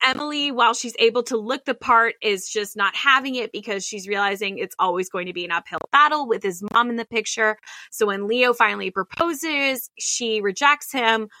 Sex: female